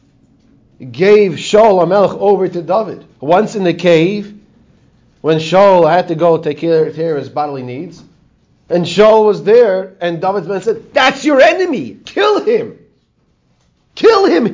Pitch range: 130-190 Hz